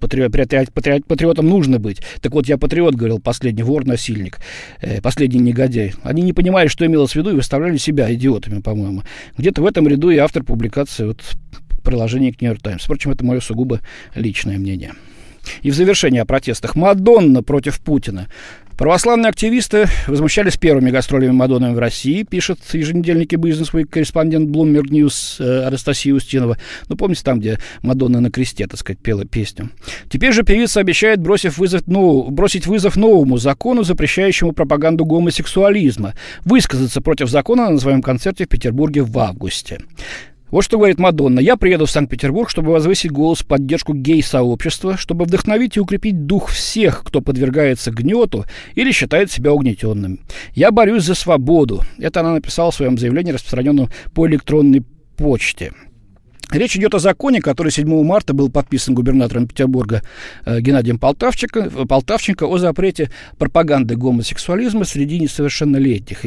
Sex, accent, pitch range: male, native, 125-170 Hz